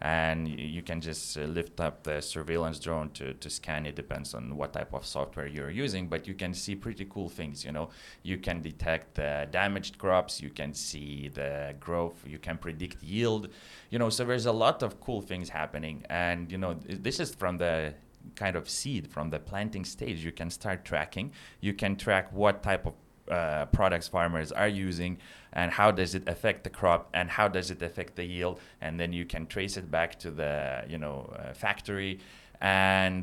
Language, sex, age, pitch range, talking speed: English, male, 30-49, 80-95 Hz, 205 wpm